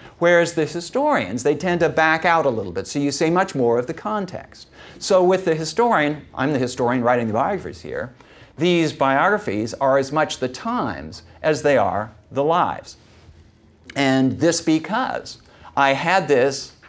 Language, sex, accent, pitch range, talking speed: English, male, American, 125-165 Hz, 170 wpm